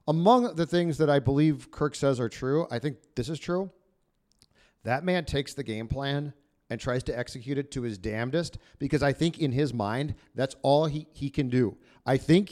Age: 40-59